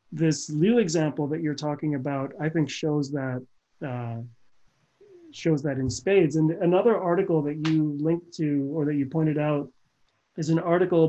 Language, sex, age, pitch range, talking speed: English, male, 30-49, 150-185 Hz, 170 wpm